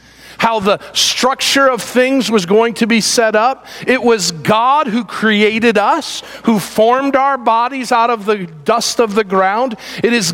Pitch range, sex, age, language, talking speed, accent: 185-245 Hz, male, 50-69, English, 175 wpm, American